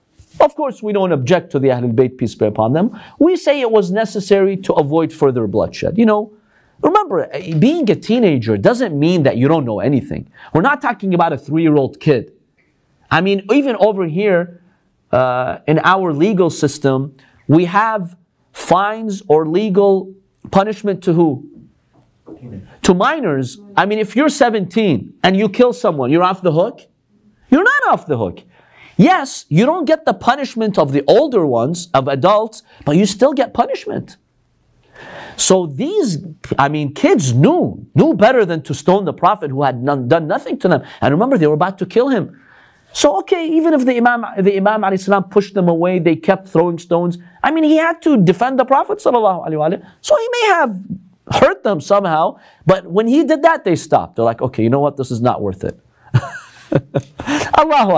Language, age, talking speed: English, 40-59, 180 wpm